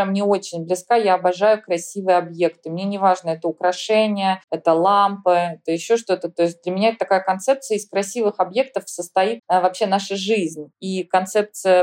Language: Russian